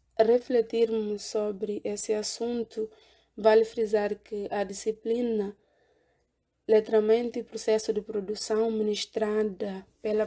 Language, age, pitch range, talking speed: Portuguese, 20-39, 205-225 Hz, 90 wpm